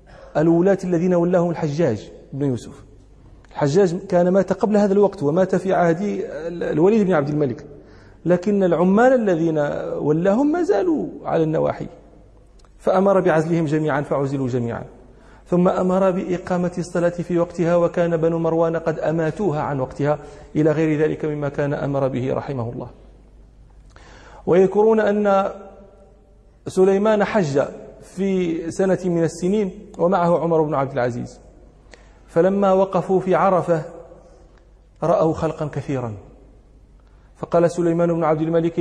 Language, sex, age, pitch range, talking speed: Arabic, male, 40-59, 145-180 Hz, 120 wpm